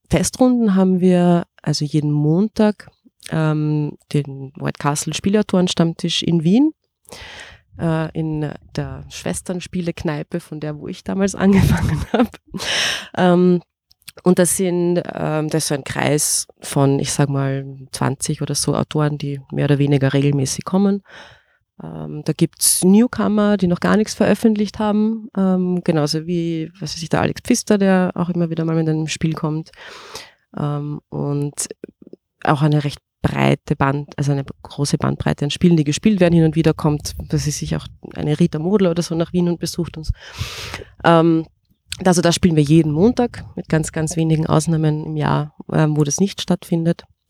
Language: German